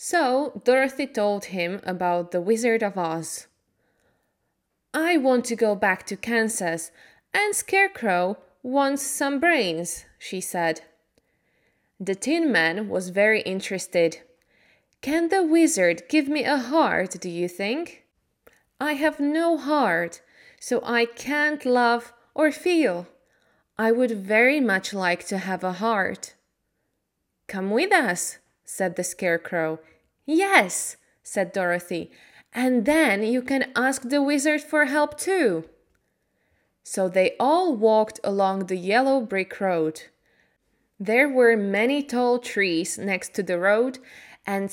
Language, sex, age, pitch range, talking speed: Slovak, female, 20-39, 185-280 Hz, 130 wpm